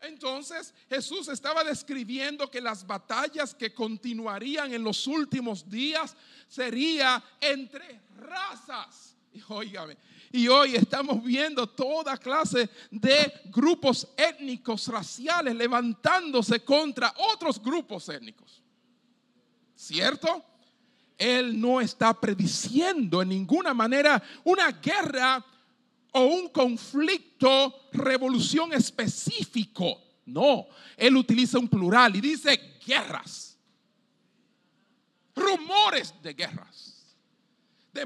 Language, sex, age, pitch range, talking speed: Spanish, male, 40-59, 225-285 Hz, 95 wpm